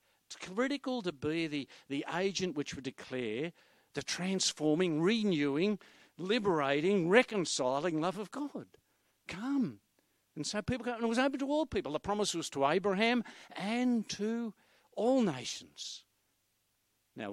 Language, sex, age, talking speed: English, male, 60-79, 140 wpm